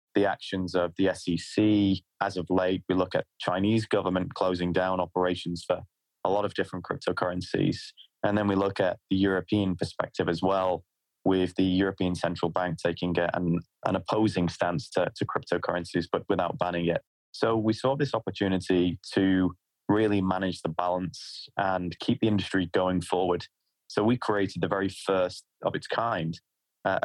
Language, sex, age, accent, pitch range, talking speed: English, male, 20-39, British, 90-100 Hz, 165 wpm